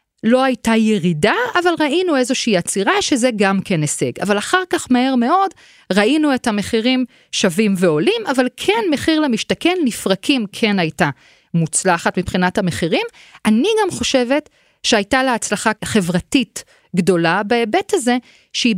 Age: 30-49